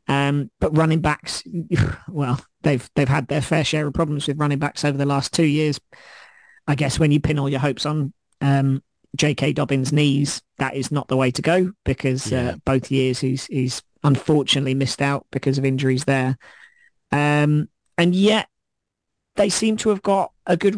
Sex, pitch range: male, 135-160 Hz